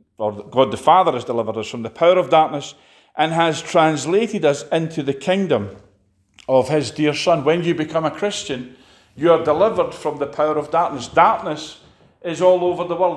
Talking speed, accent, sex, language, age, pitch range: 190 wpm, British, male, English, 40-59, 120-160 Hz